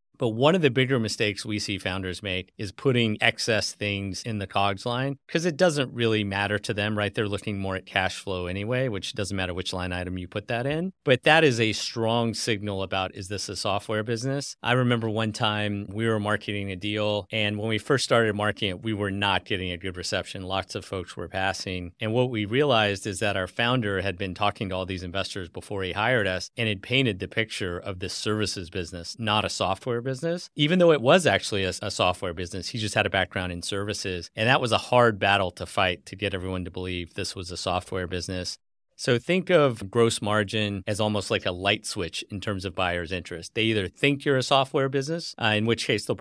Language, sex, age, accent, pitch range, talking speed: English, male, 40-59, American, 95-115 Hz, 230 wpm